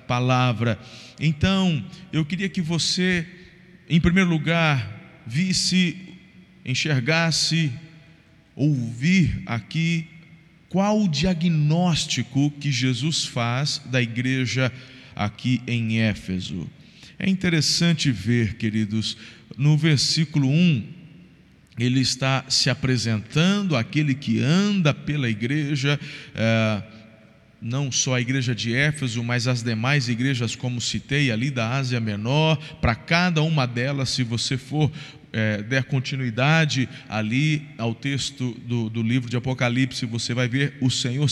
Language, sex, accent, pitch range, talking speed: Portuguese, male, Brazilian, 125-165 Hz, 110 wpm